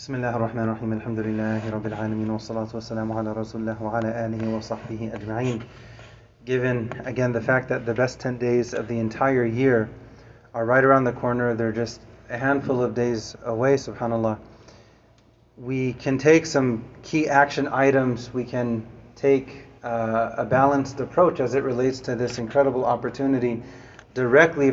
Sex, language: male, English